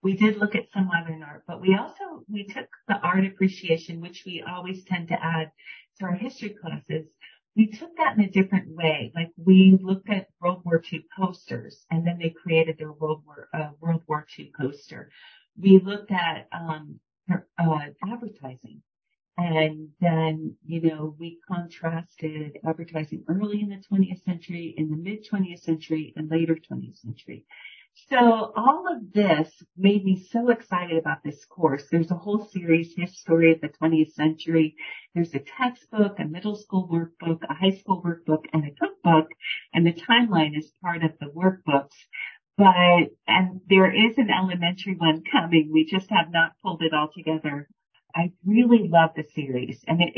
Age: 40-59